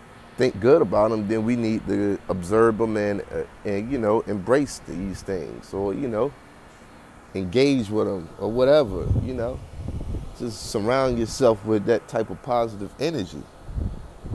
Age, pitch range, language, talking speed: 30-49, 85-115 Hz, English, 155 wpm